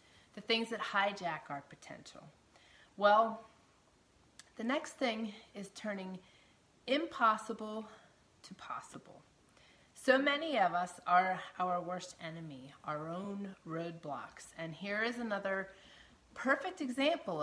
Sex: female